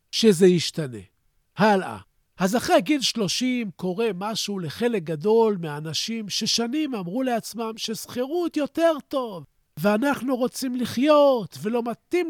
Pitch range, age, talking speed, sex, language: 175-240 Hz, 50-69, 110 wpm, male, Hebrew